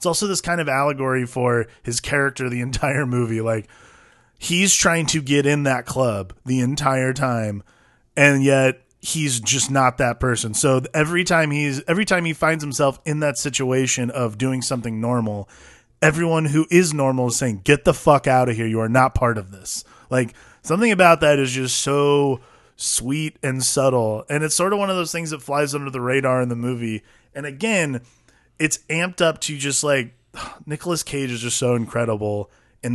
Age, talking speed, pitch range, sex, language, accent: 20-39, 190 wpm, 120-155 Hz, male, English, American